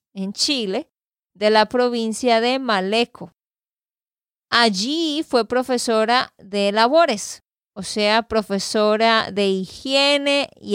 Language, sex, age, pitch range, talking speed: Spanish, female, 20-39, 200-255 Hz, 100 wpm